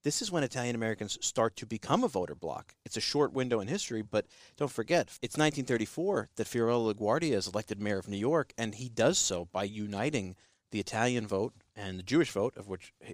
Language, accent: English, American